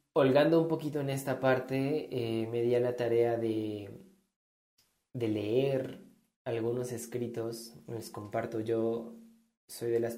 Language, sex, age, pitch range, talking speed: Spanish, male, 20-39, 110-125 Hz, 135 wpm